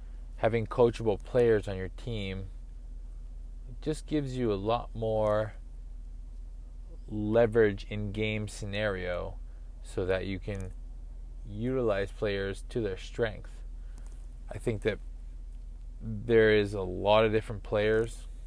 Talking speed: 115 wpm